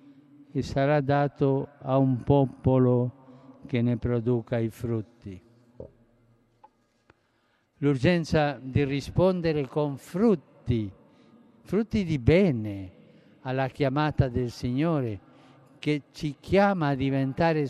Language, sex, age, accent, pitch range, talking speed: Italian, male, 60-79, native, 135-175 Hz, 95 wpm